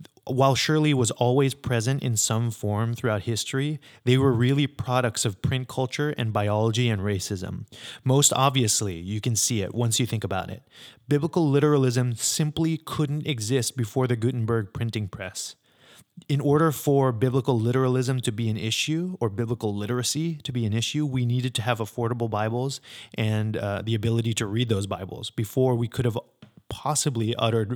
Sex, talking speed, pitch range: male, 170 wpm, 110-130 Hz